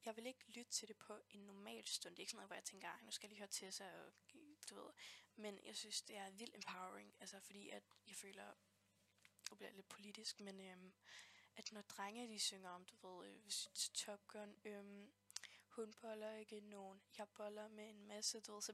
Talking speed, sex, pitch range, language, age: 225 wpm, female, 200-220 Hz, Danish, 10-29